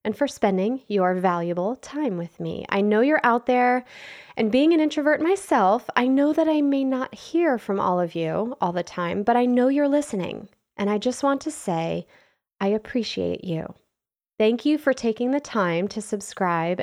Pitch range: 185-260 Hz